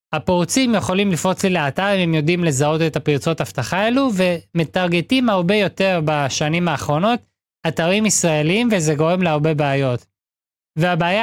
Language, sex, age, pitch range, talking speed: Hebrew, male, 20-39, 155-205 Hz, 135 wpm